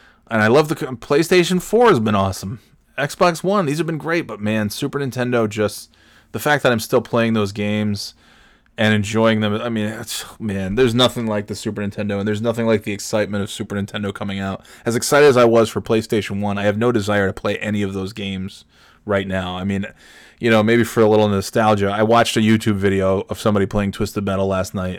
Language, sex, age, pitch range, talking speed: English, male, 20-39, 100-120 Hz, 225 wpm